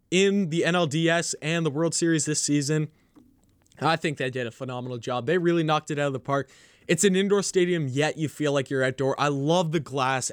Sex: male